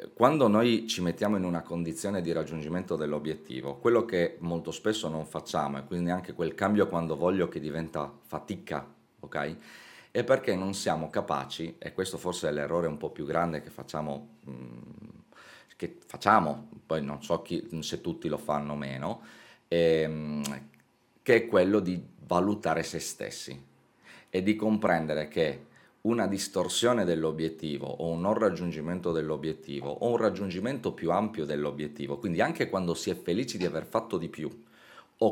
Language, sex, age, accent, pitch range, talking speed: Italian, male, 30-49, native, 75-90 Hz, 155 wpm